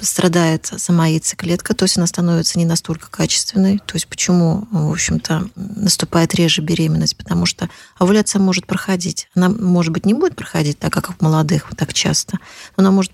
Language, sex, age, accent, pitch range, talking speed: Russian, female, 30-49, native, 170-195 Hz, 170 wpm